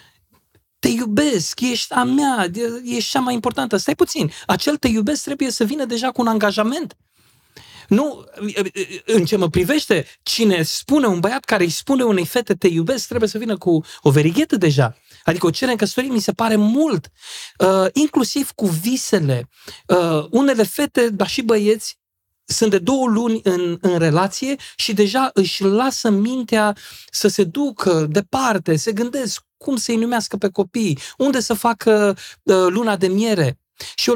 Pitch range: 185-240 Hz